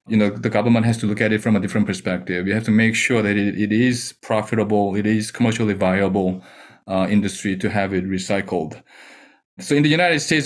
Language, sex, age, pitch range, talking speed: English, male, 30-49, 105-135 Hz, 220 wpm